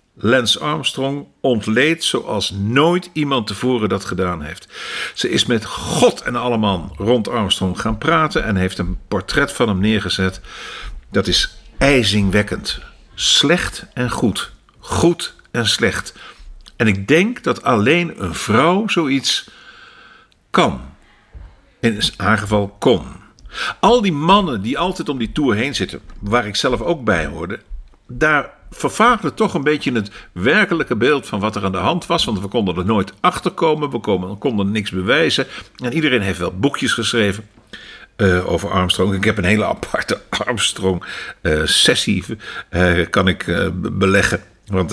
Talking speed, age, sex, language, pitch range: 155 wpm, 50-69, male, Dutch, 95-130 Hz